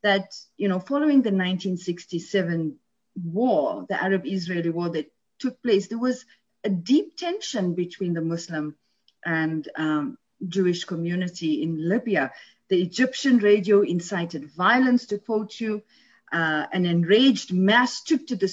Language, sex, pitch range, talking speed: English, female, 185-255 Hz, 135 wpm